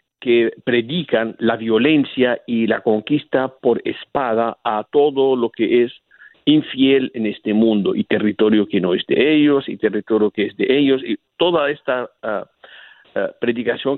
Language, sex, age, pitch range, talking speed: Spanish, male, 50-69, 110-140 Hz, 150 wpm